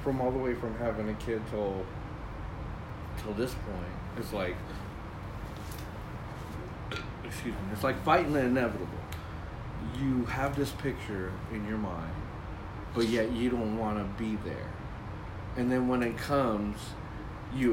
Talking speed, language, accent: 140 wpm, English, American